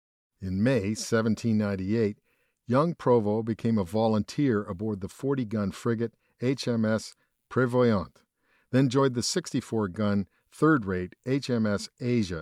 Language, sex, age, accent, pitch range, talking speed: English, male, 50-69, American, 100-125 Hz, 100 wpm